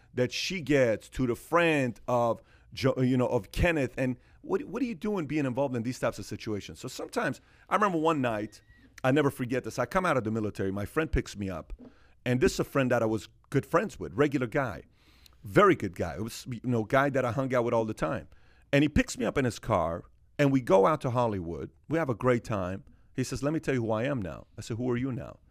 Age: 40-59